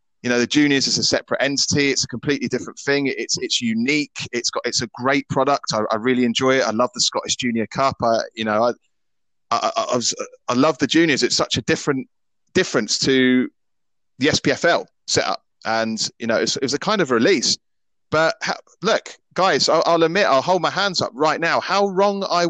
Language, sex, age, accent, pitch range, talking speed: English, male, 30-49, British, 115-150 Hz, 215 wpm